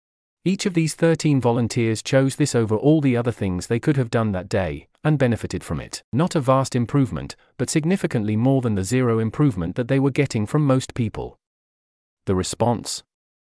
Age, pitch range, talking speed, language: 40-59, 105-135 Hz, 190 wpm, English